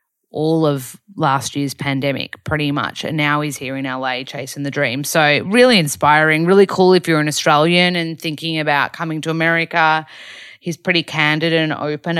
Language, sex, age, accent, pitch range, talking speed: English, female, 30-49, Australian, 150-180 Hz, 175 wpm